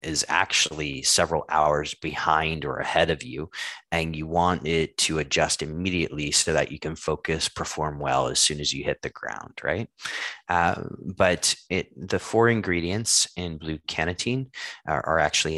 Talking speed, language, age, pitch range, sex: 165 wpm, English, 30-49, 75-85 Hz, male